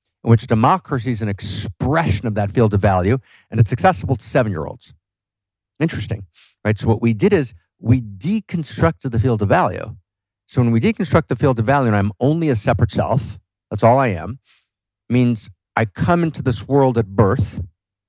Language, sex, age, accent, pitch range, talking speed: English, male, 50-69, American, 100-125 Hz, 180 wpm